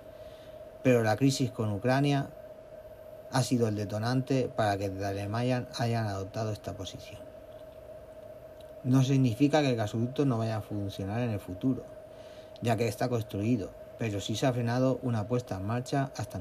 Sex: male